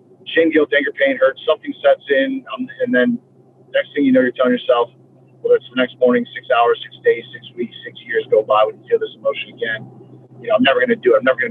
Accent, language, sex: American, English, male